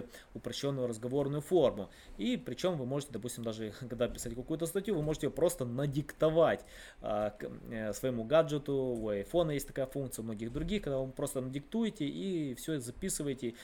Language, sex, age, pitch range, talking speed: Russian, male, 20-39, 120-150 Hz, 170 wpm